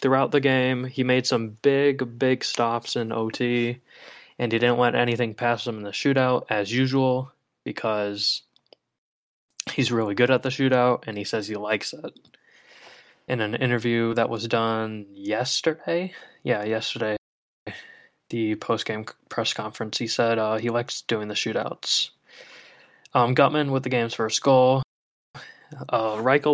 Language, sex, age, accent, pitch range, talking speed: English, male, 20-39, American, 110-130 Hz, 150 wpm